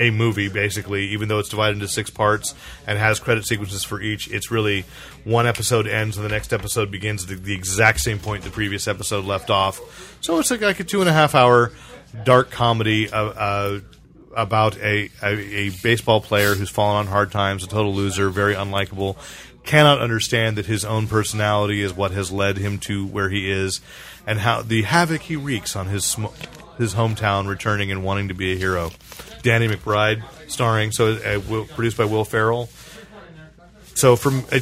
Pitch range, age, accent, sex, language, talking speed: 100-130 Hz, 30-49, American, male, English, 190 wpm